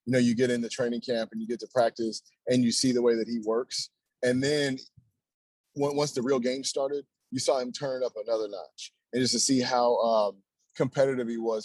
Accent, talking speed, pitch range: American, 225 wpm, 120-150 Hz